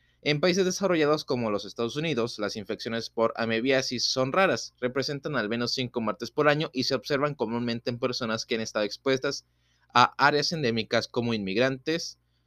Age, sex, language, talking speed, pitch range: 20-39, male, Spanish, 170 wpm, 105-135 Hz